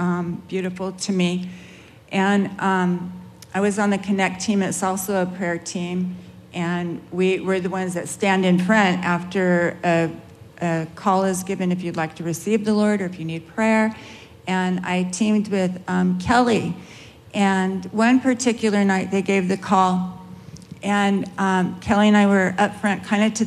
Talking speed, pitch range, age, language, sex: 175 wpm, 185-220 Hz, 50-69, English, female